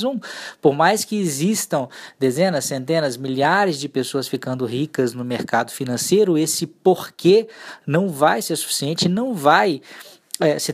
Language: Portuguese